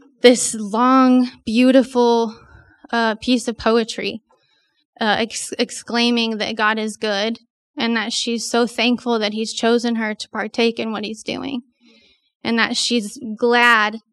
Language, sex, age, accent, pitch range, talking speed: English, female, 20-39, American, 215-250 Hz, 135 wpm